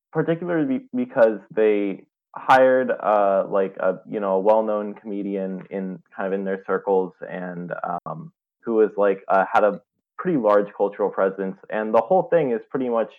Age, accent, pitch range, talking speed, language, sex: 20-39, American, 95-110 Hz, 170 wpm, English, male